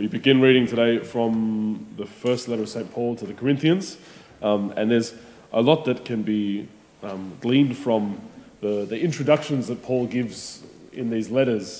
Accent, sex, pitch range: Australian, male, 110-130 Hz